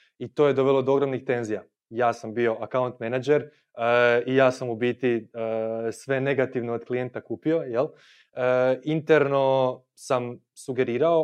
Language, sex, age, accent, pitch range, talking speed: Croatian, male, 20-39, native, 120-135 Hz, 150 wpm